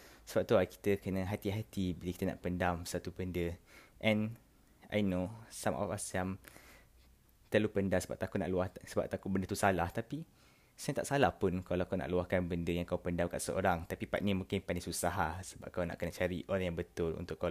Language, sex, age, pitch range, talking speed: Malay, male, 20-39, 90-105 Hz, 215 wpm